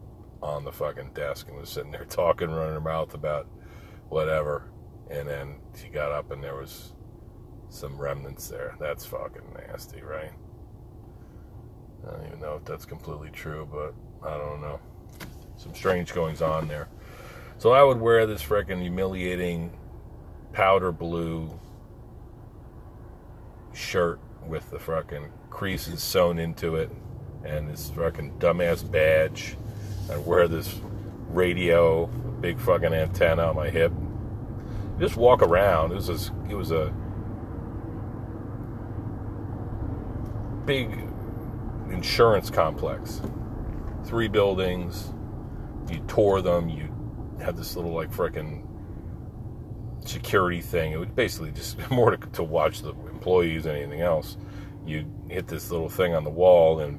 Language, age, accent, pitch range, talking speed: English, 40-59, American, 80-110 Hz, 135 wpm